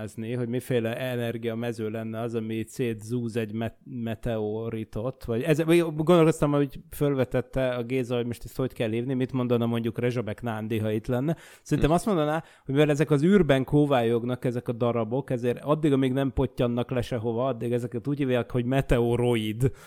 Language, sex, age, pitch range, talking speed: Hungarian, male, 30-49, 120-140 Hz, 170 wpm